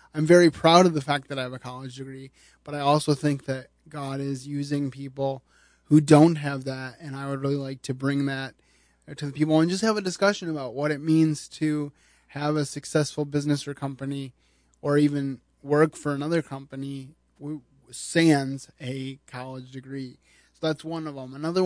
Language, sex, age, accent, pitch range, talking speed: English, male, 20-39, American, 135-160 Hz, 190 wpm